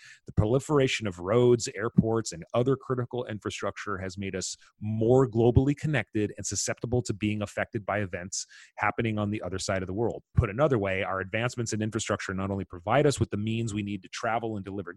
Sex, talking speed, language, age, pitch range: male, 200 wpm, English, 30-49, 100-125 Hz